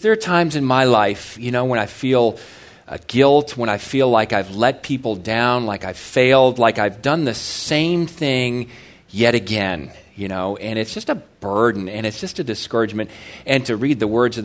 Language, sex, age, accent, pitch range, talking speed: English, male, 40-59, American, 110-140 Hz, 210 wpm